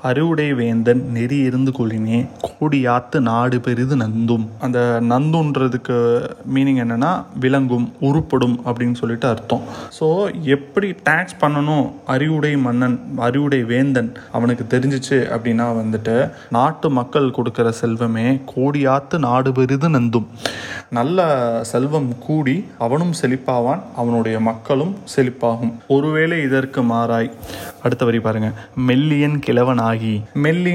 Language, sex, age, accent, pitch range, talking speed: Tamil, male, 20-39, native, 120-145 Hz, 105 wpm